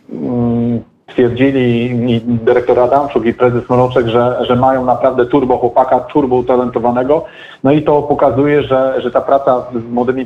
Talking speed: 145 wpm